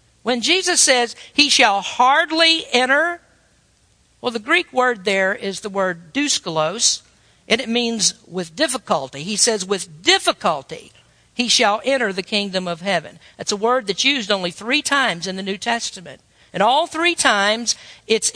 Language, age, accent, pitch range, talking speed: English, 50-69, American, 205-280 Hz, 160 wpm